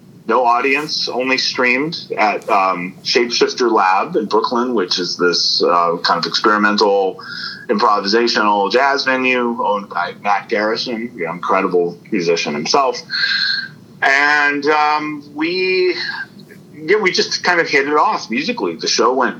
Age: 30-49